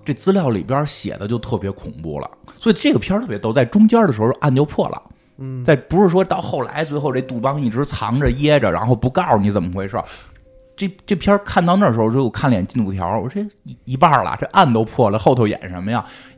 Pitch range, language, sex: 105-145 Hz, Chinese, male